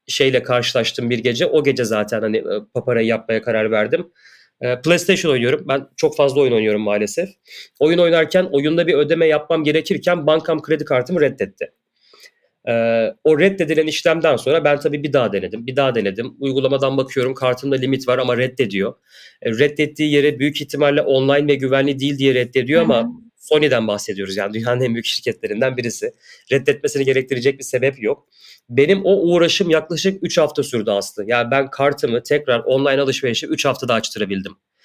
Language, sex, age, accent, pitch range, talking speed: Turkish, male, 30-49, native, 125-160 Hz, 155 wpm